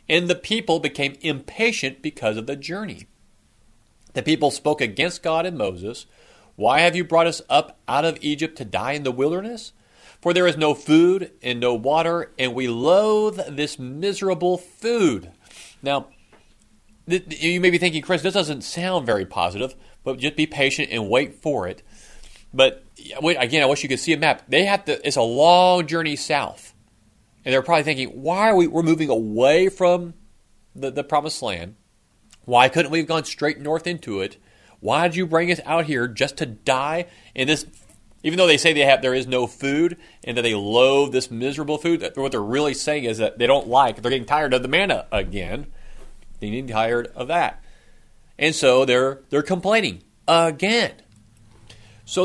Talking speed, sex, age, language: 185 wpm, male, 40-59, English